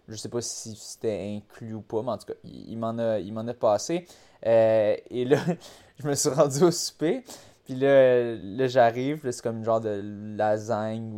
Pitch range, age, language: 110-140 Hz, 20-39, French